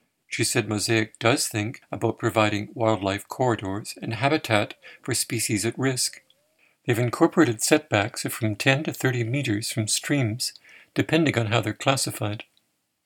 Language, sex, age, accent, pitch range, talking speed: English, male, 50-69, American, 110-135 Hz, 140 wpm